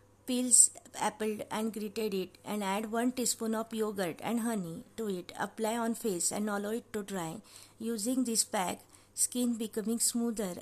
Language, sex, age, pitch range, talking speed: English, female, 50-69, 180-230 Hz, 165 wpm